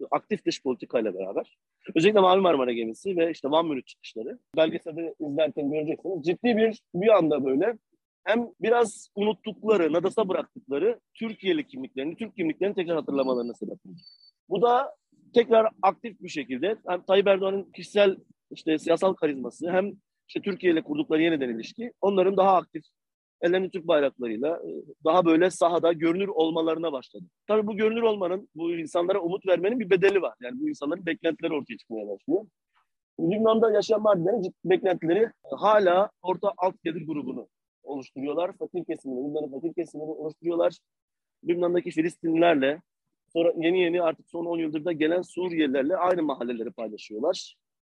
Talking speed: 140 wpm